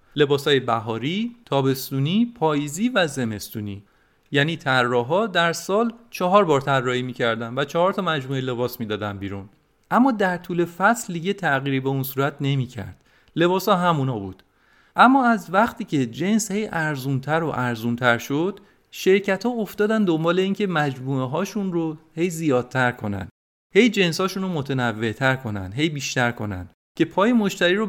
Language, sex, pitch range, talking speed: Persian, male, 125-185 Hz, 145 wpm